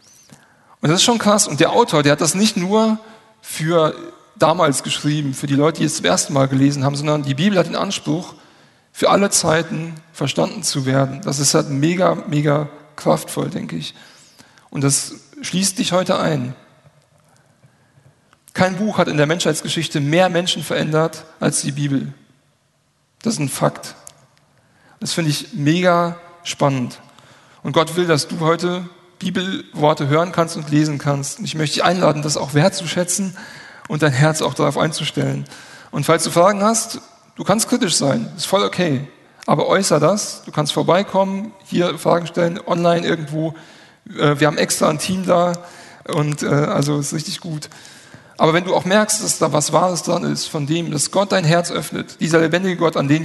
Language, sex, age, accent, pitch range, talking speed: German, male, 40-59, German, 150-180 Hz, 175 wpm